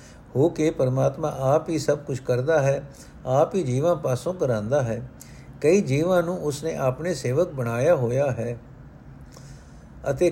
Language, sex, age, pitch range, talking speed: Punjabi, male, 60-79, 135-175 Hz, 140 wpm